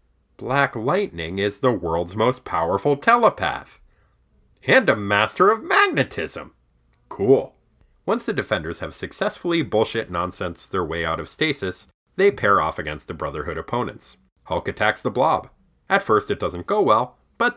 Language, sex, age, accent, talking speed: English, male, 30-49, American, 150 wpm